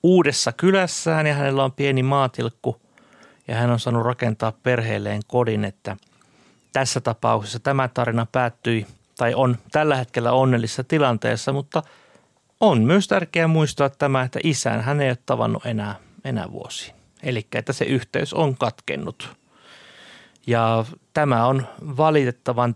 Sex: male